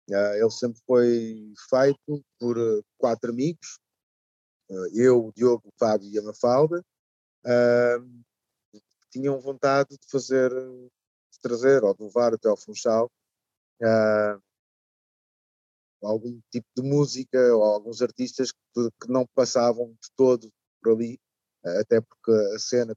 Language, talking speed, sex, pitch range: Portuguese, 135 wpm, male, 110-140 Hz